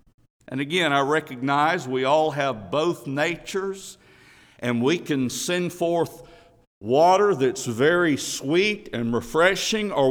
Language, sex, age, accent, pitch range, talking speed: English, male, 60-79, American, 145-200 Hz, 125 wpm